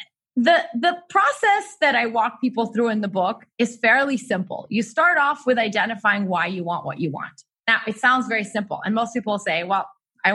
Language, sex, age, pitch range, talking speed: English, female, 20-39, 210-270 Hz, 210 wpm